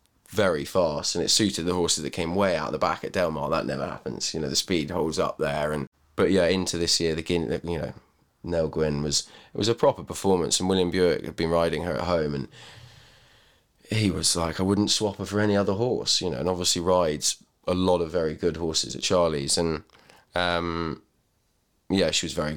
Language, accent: English, British